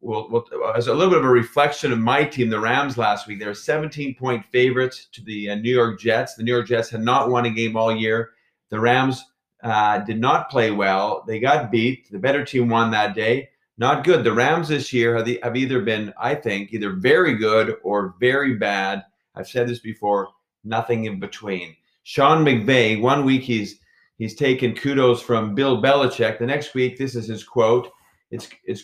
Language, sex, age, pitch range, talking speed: English, male, 40-59, 105-125 Hz, 205 wpm